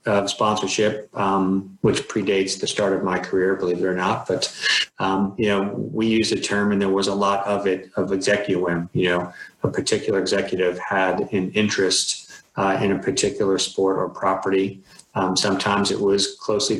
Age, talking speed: 30-49, 180 wpm